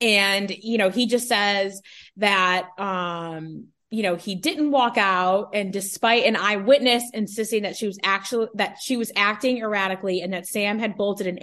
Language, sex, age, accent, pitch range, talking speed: English, female, 20-39, American, 185-235 Hz, 180 wpm